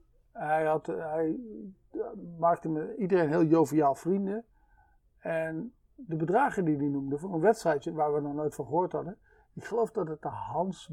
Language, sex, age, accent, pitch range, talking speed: Dutch, male, 50-69, Dutch, 150-215 Hz, 165 wpm